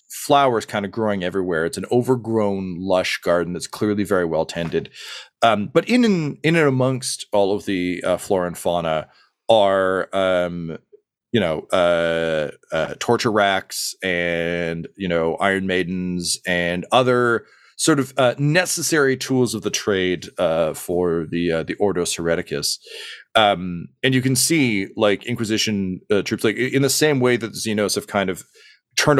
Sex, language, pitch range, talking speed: male, English, 90-130 Hz, 165 wpm